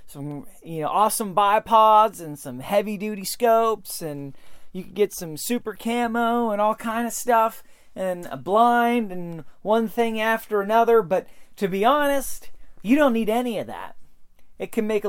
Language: English